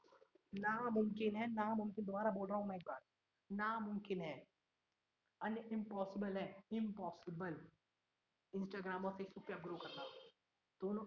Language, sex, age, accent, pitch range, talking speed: Hindi, female, 20-39, native, 175-210 Hz, 110 wpm